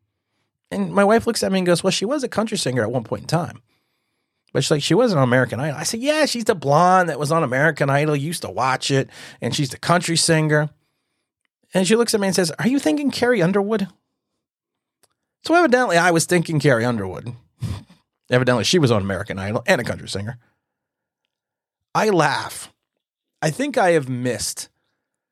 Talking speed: 195 wpm